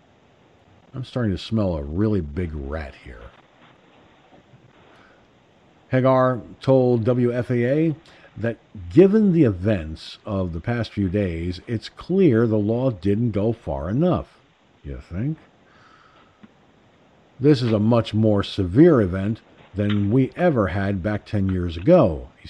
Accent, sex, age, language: American, male, 50-69, English